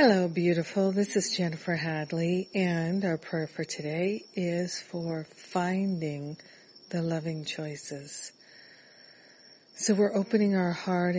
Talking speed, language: 120 wpm, English